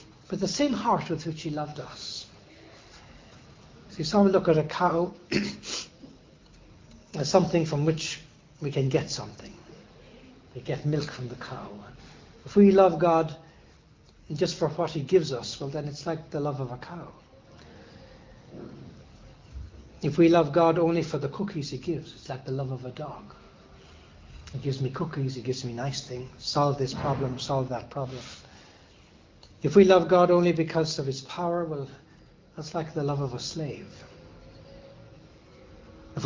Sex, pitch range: male, 135-165 Hz